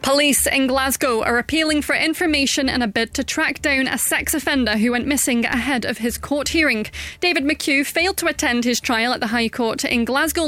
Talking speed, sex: 210 wpm, female